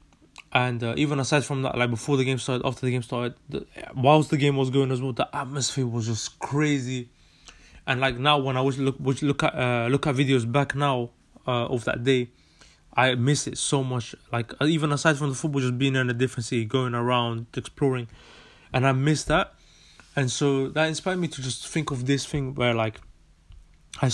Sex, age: male, 20-39